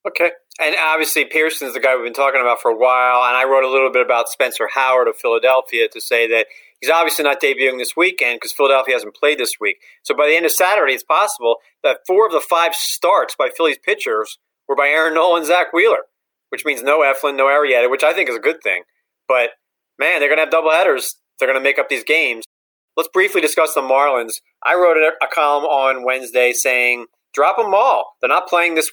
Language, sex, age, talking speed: English, male, 40-59, 230 wpm